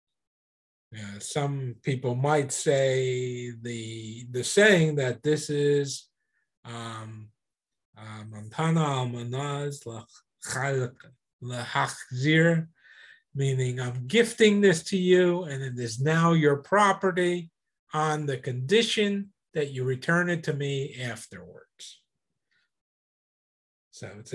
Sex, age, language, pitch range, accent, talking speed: male, 50-69, English, 115-155 Hz, American, 90 wpm